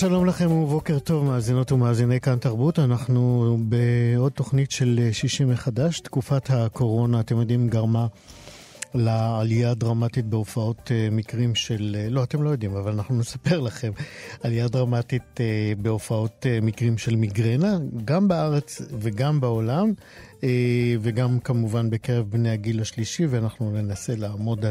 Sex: male